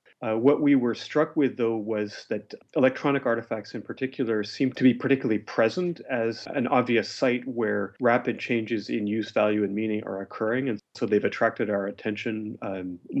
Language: English